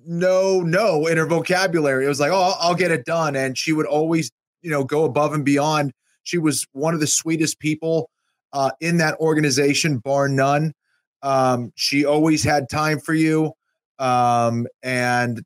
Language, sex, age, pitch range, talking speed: English, male, 30-49, 120-145 Hz, 180 wpm